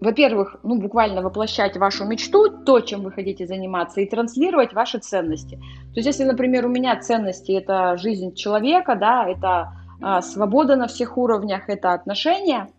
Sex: female